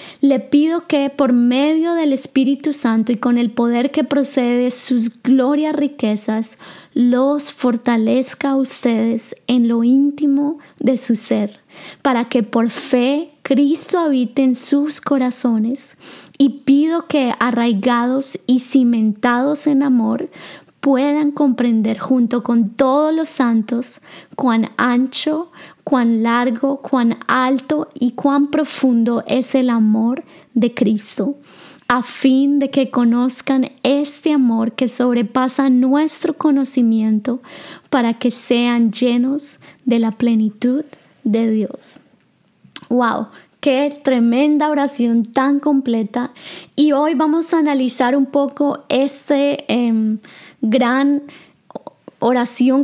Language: Spanish